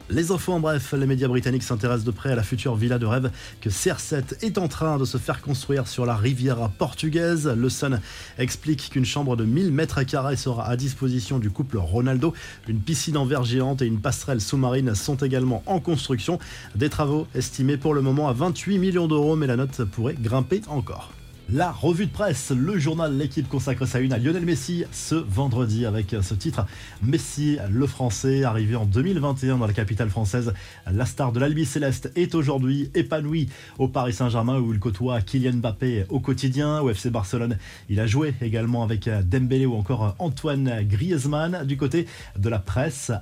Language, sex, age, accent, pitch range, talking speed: French, male, 20-39, French, 120-150 Hz, 190 wpm